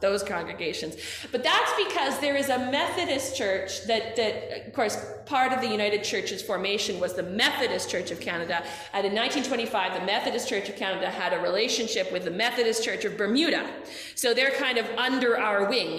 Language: English